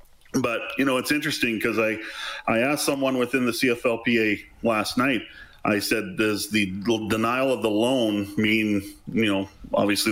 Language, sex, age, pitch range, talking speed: English, male, 40-59, 110-130 Hz, 160 wpm